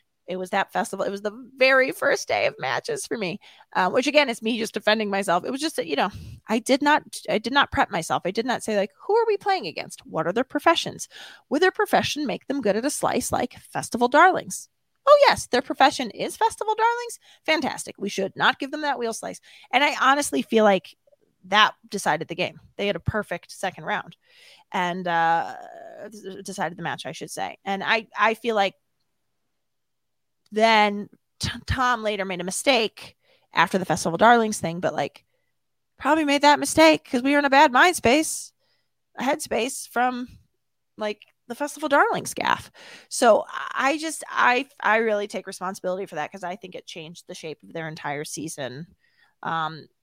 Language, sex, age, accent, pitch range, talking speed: English, female, 30-49, American, 190-290 Hz, 195 wpm